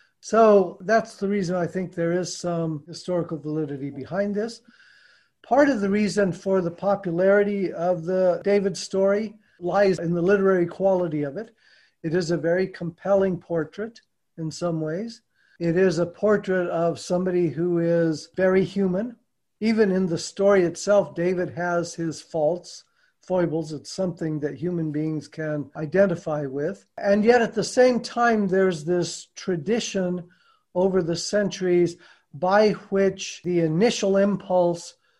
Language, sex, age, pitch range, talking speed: English, male, 50-69, 165-195 Hz, 145 wpm